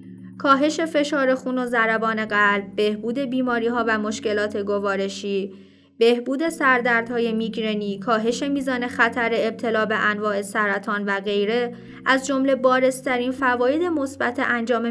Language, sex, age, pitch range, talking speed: Persian, female, 20-39, 215-265 Hz, 115 wpm